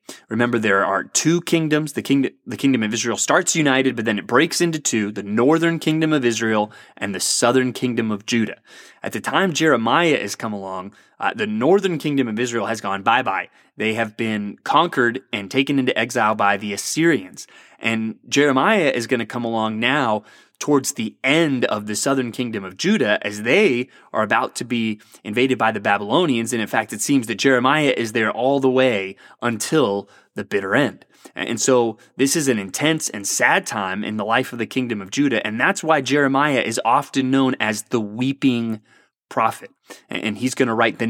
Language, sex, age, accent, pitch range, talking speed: English, male, 20-39, American, 110-135 Hz, 195 wpm